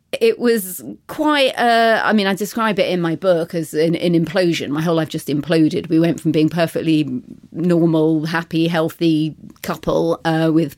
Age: 40-59